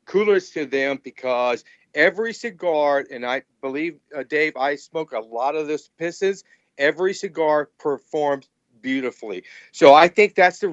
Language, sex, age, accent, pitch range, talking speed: English, male, 50-69, American, 140-210 Hz, 150 wpm